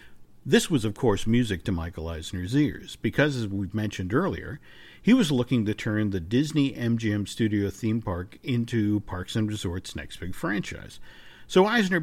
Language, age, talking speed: English, 50-69, 170 wpm